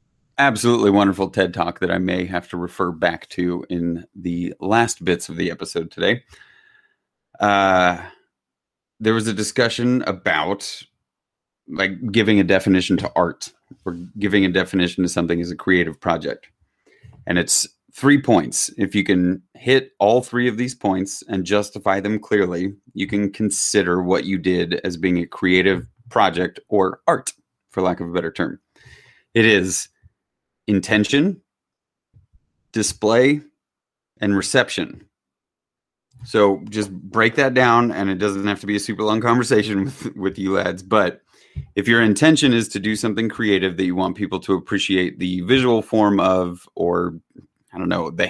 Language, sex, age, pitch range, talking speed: English, male, 30-49, 90-115 Hz, 160 wpm